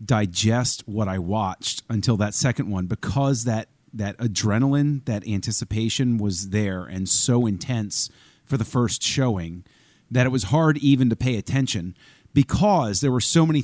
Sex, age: male, 30-49